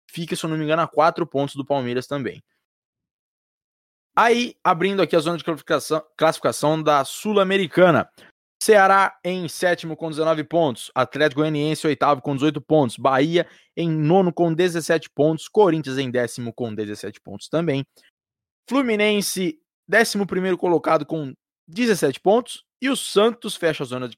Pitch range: 140-190 Hz